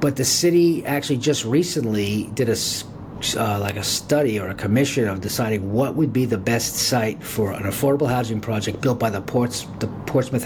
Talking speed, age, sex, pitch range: 195 wpm, 50-69, male, 110-135 Hz